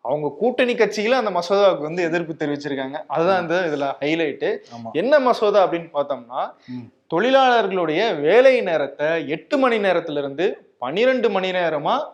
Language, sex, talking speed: Tamil, male, 125 wpm